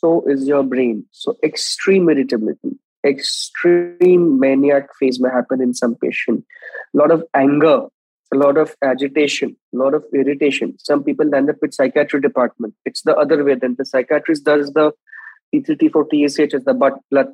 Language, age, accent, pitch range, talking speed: English, 20-39, Indian, 140-165 Hz, 175 wpm